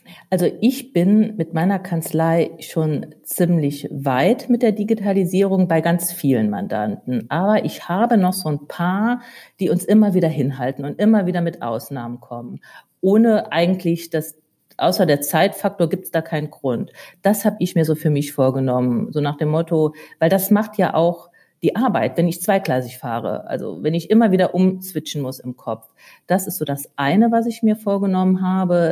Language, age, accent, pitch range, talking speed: German, 50-69, German, 155-200 Hz, 180 wpm